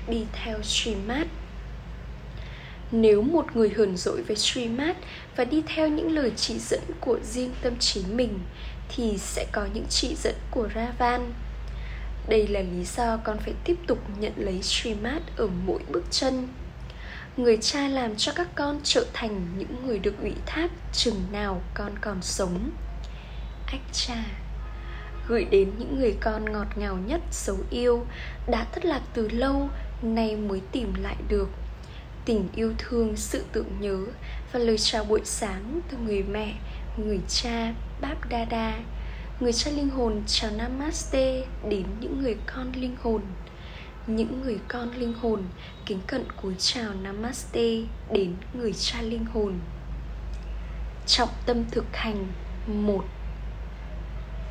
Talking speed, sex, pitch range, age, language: 150 wpm, female, 205-245 Hz, 10-29, Vietnamese